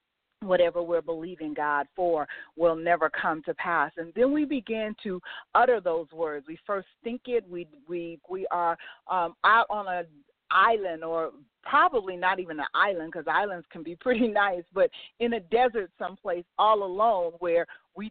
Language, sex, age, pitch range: English, female, 40-59, 170-215 Hz